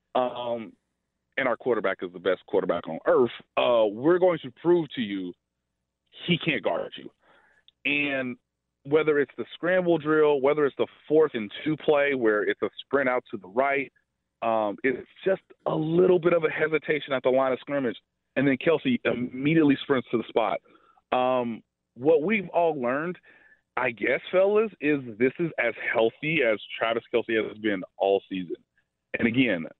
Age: 30-49